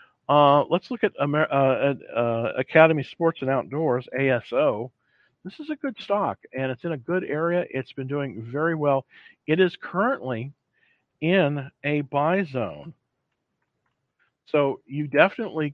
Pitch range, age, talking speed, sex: 130-175 Hz, 50-69, 145 wpm, male